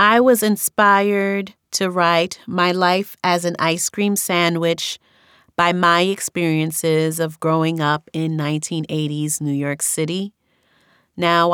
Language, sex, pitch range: English, female, 165-200 Hz